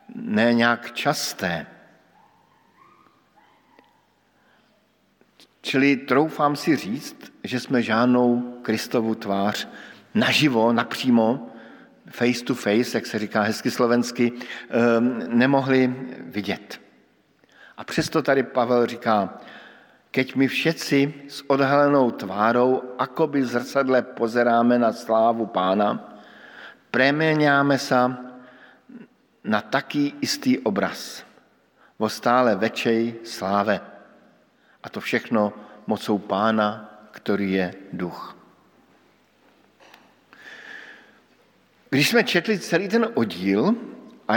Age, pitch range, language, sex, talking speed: 50-69, 115-140 Hz, Slovak, male, 90 wpm